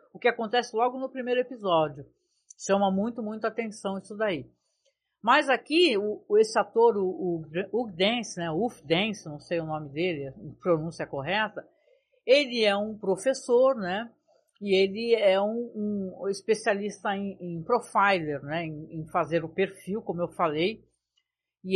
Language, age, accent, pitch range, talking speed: Portuguese, 50-69, Brazilian, 170-220 Hz, 155 wpm